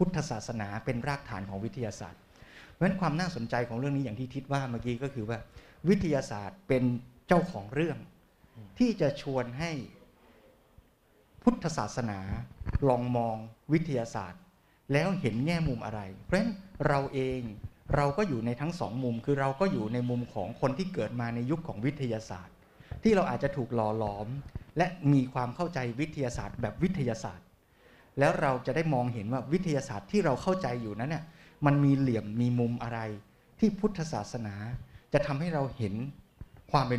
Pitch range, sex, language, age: 115-150 Hz, male, Thai, 20-39